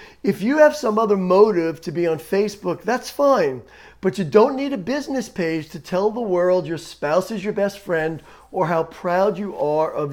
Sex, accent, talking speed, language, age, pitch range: male, American, 205 wpm, English, 40-59, 175-225 Hz